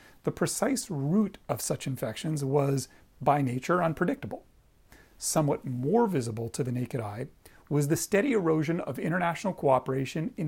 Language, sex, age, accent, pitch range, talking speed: English, male, 40-59, American, 135-185 Hz, 145 wpm